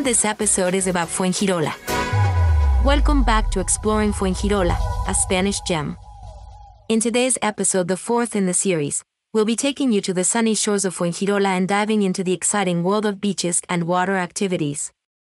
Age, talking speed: 30-49, 165 wpm